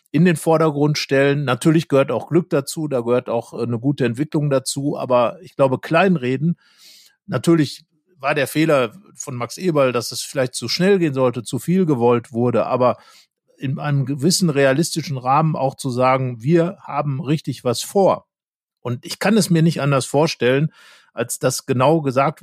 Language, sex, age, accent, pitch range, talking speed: German, male, 50-69, German, 125-155 Hz, 170 wpm